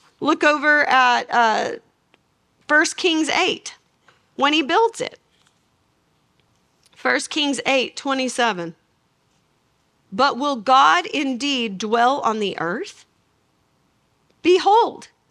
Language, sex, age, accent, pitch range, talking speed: English, female, 40-59, American, 255-385 Hz, 95 wpm